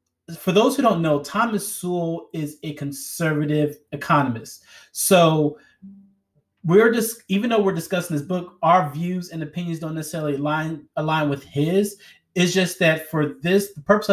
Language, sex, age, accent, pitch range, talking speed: English, male, 30-49, American, 145-175 Hz, 155 wpm